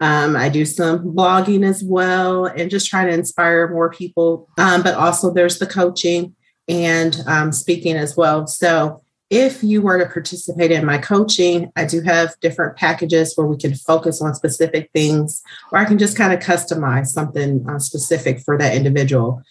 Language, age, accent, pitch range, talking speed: English, 30-49, American, 150-175 Hz, 180 wpm